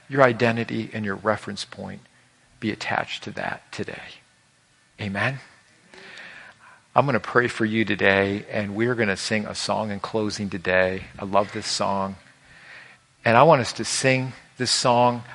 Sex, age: male, 50-69